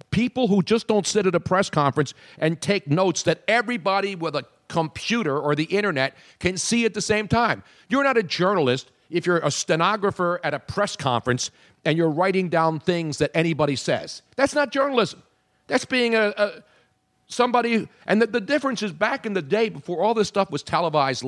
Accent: American